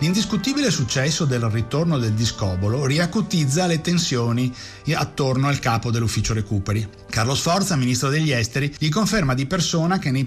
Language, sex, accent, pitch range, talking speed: Italian, male, native, 120-165 Hz, 145 wpm